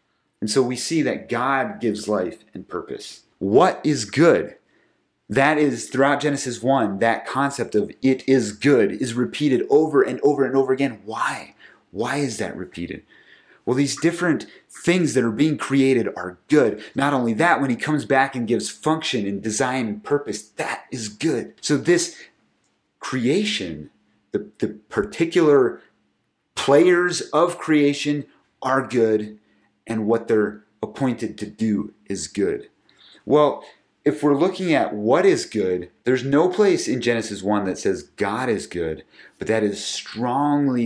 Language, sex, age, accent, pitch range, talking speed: English, male, 30-49, American, 105-145 Hz, 155 wpm